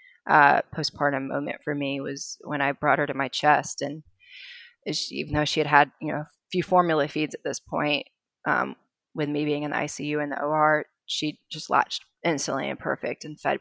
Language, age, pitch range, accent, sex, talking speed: English, 30-49, 145-175 Hz, American, female, 205 wpm